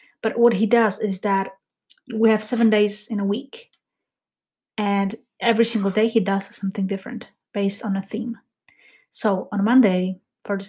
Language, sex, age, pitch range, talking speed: English, female, 20-39, 200-225 Hz, 170 wpm